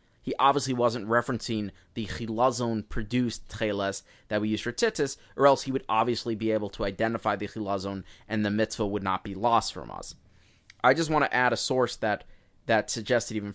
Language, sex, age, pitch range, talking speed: English, male, 20-39, 100-120 Hz, 190 wpm